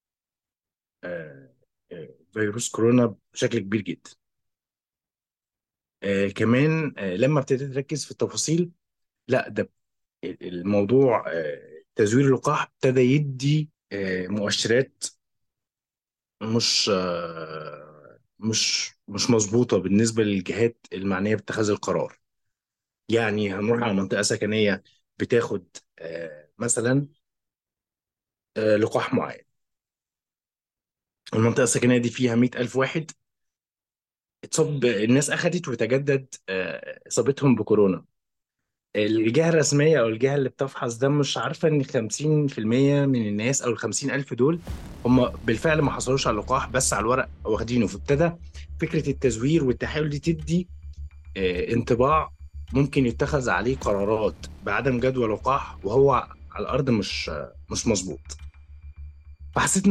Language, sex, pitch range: Arabic, male, 100-140 Hz